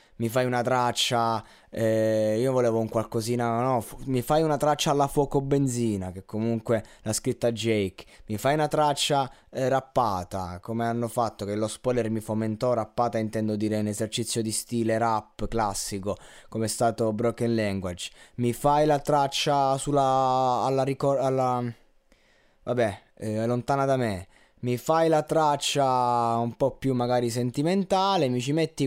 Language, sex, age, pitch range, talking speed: Italian, male, 20-39, 110-140 Hz, 155 wpm